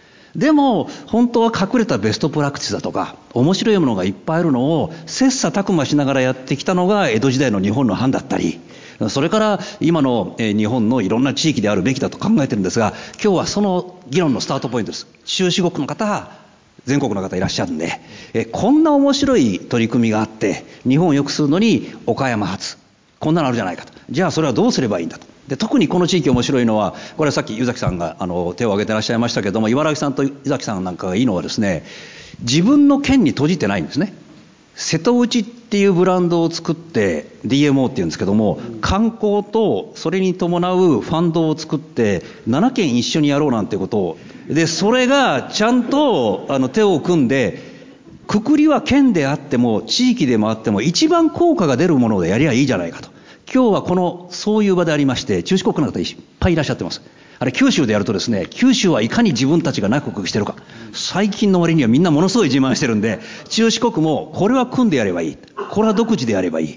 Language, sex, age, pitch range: Japanese, male, 50-69, 145-225 Hz